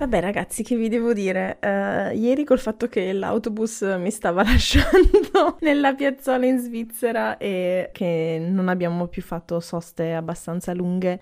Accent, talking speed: native, 145 wpm